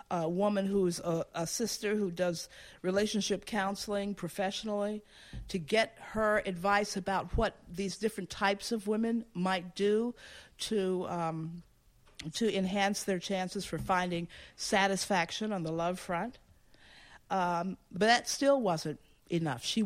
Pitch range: 170-205 Hz